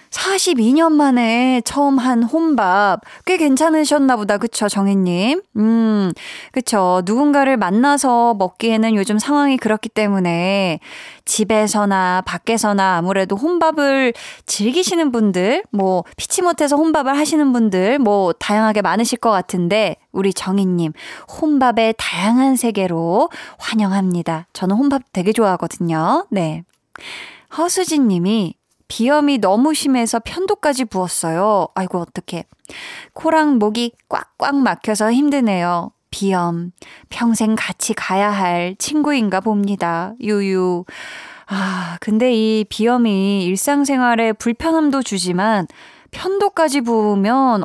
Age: 20-39